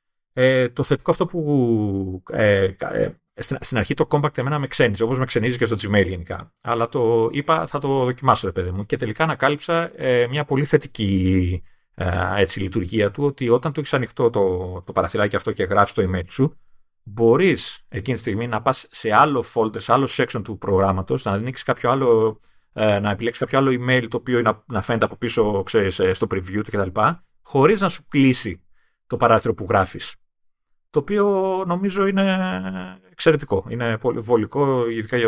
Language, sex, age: Greek, male, 30-49